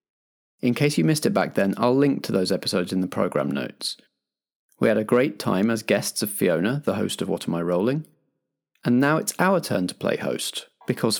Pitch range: 100-135 Hz